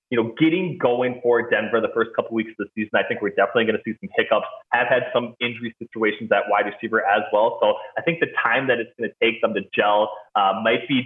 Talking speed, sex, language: 265 wpm, male, English